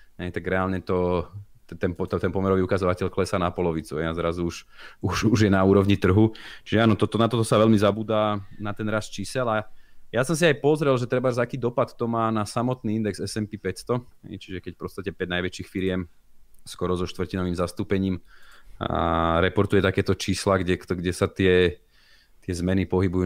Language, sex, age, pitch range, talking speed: Slovak, male, 30-49, 90-105 Hz, 190 wpm